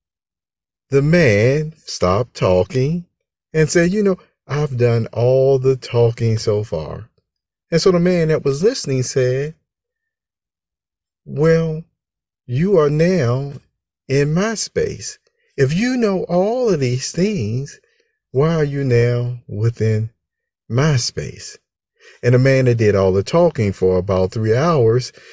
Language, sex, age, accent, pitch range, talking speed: English, male, 50-69, American, 95-150 Hz, 135 wpm